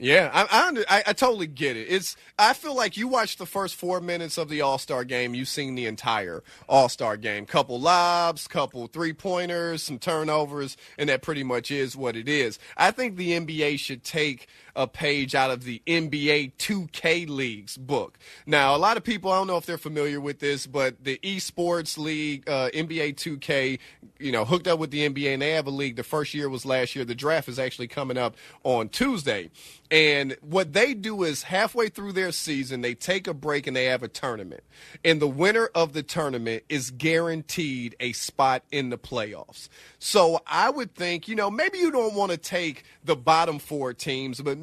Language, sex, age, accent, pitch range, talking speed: English, male, 30-49, American, 130-175 Hz, 210 wpm